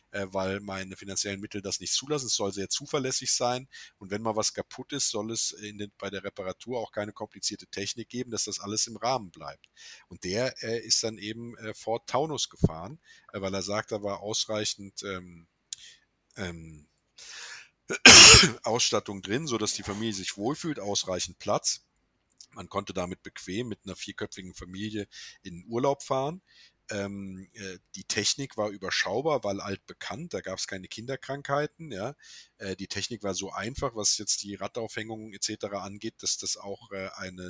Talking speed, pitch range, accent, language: 160 wpm, 95-115 Hz, German, German